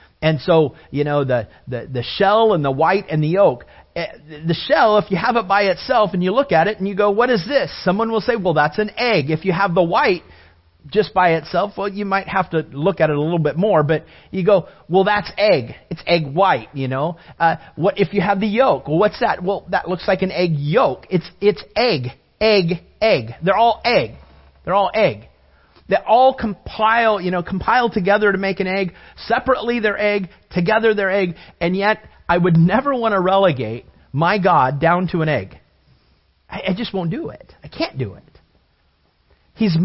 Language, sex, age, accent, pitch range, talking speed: English, male, 40-59, American, 150-210 Hz, 210 wpm